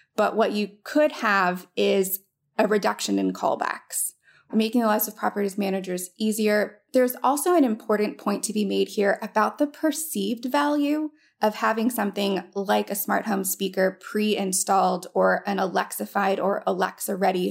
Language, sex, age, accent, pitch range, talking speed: English, female, 20-39, American, 195-250 Hz, 150 wpm